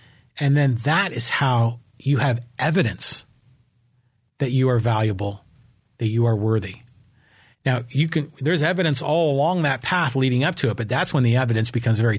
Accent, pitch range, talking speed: American, 120-145 Hz, 175 wpm